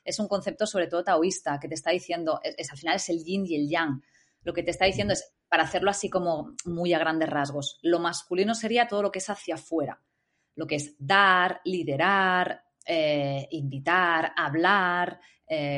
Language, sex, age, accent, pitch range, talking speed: Spanish, female, 20-39, Spanish, 165-215 Hz, 200 wpm